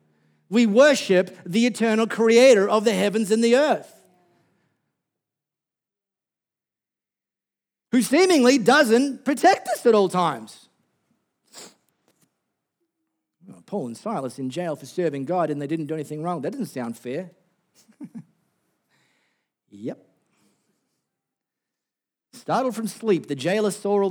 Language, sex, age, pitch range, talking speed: English, male, 50-69, 135-220 Hz, 110 wpm